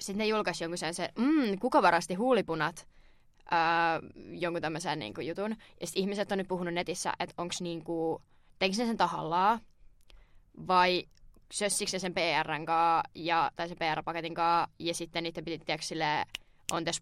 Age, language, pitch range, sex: 20-39, Finnish, 165-185 Hz, female